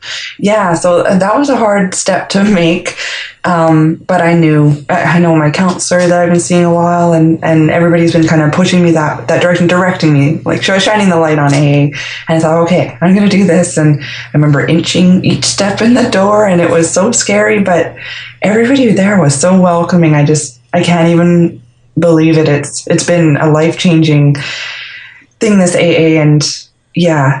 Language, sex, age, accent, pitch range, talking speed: English, female, 20-39, American, 150-175 Hz, 195 wpm